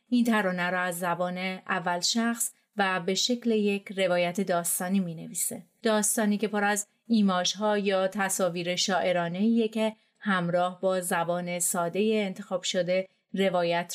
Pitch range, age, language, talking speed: 185-215 Hz, 30-49, Persian, 140 wpm